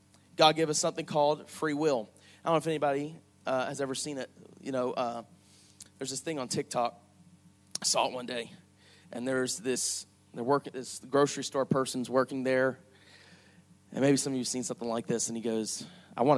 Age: 30-49